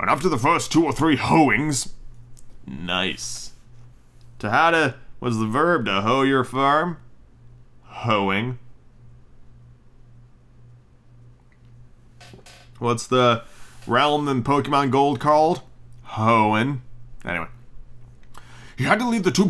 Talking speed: 110 wpm